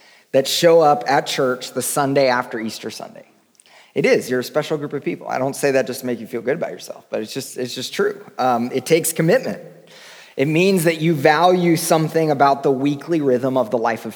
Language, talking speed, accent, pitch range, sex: English, 230 wpm, American, 120-150 Hz, male